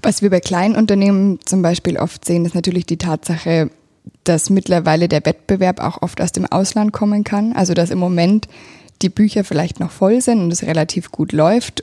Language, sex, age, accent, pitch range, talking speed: German, female, 20-39, German, 165-195 Hz, 195 wpm